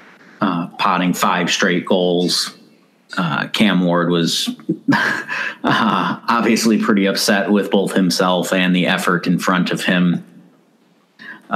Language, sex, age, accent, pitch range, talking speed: English, male, 30-49, American, 85-100 Hz, 125 wpm